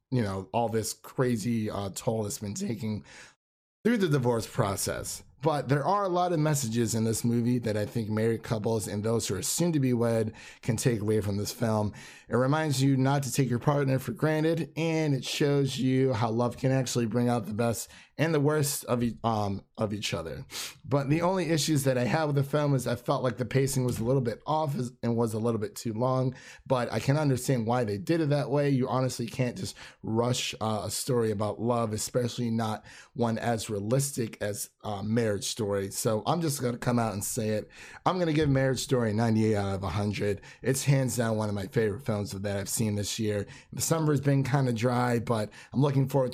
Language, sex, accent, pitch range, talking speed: English, male, American, 105-135 Hz, 225 wpm